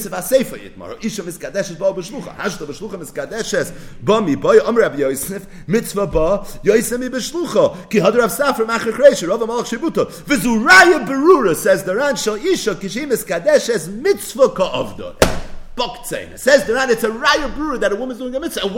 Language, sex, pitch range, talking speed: English, male, 190-280 Hz, 60 wpm